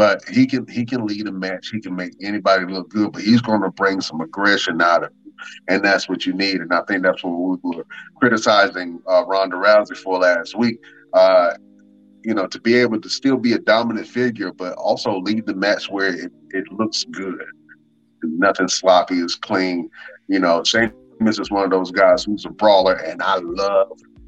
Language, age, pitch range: English, 30-49, 95-125 Hz